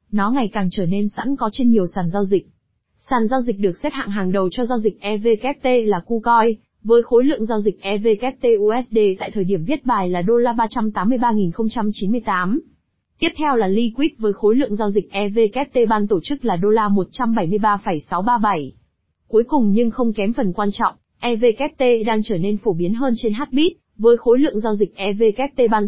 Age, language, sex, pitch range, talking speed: 20-39, Vietnamese, female, 205-250 Hz, 190 wpm